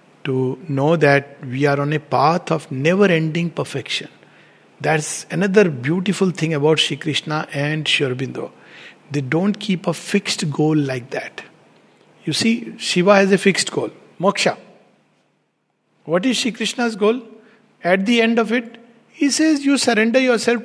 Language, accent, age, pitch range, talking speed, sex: English, Indian, 60-79, 150-220 Hz, 150 wpm, male